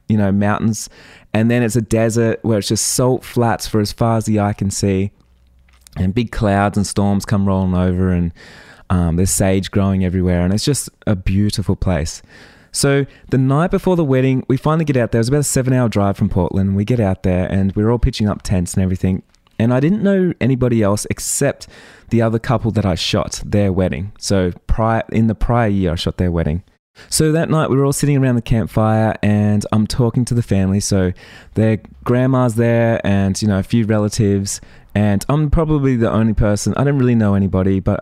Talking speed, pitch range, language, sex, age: 215 wpm, 95-120 Hz, English, male, 20-39